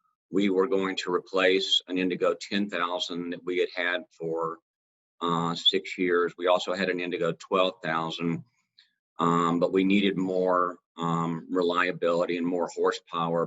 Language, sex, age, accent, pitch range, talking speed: English, male, 40-59, American, 85-95 Hz, 140 wpm